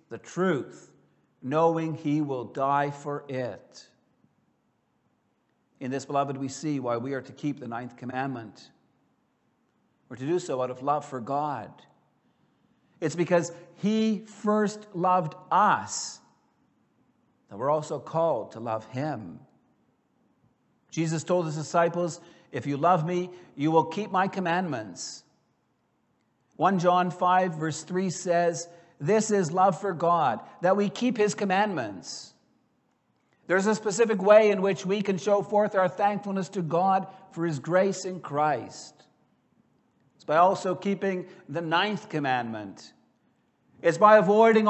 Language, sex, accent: English, male, American